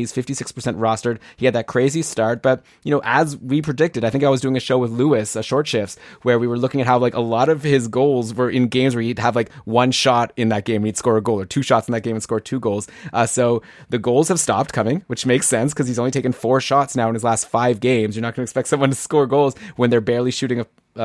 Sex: male